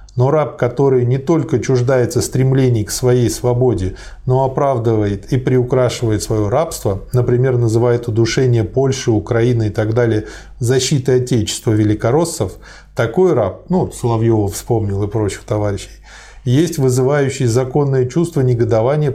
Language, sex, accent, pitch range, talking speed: Russian, male, native, 110-130 Hz, 125 wpm